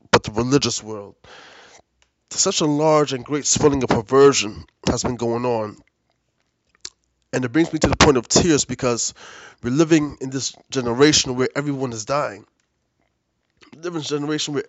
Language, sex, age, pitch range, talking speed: English, male, 20-39, 125-155 Hz, 145 wpm